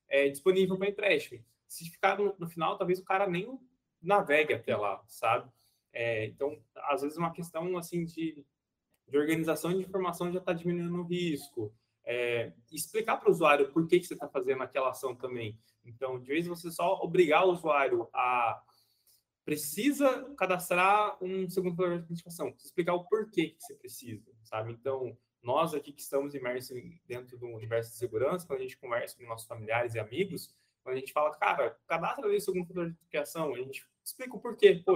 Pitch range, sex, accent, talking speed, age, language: 130-180 Hz, male, Brazilian, 185 wpm, 20-39, Portuguese